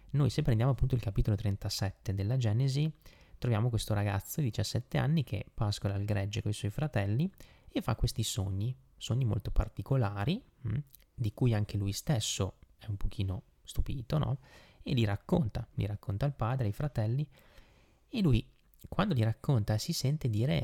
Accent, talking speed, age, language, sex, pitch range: native, 170 wpm, 20-39, Italian, male, 105-130 Hz